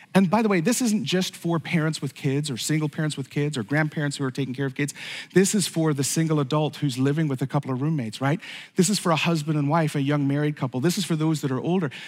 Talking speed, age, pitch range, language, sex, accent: 280 wpm, 40-59, 155-210 Hz, English, male, American